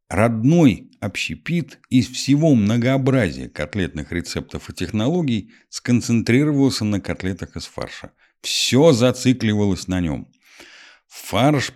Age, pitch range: 50-69, 85-125 Hz